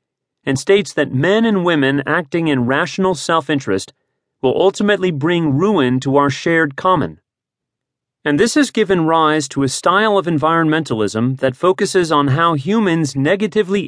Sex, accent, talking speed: male, American, 145 wpm